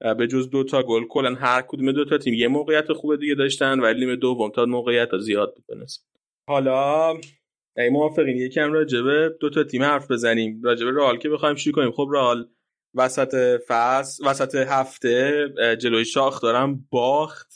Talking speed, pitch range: 165 wpm, 120-135 Hz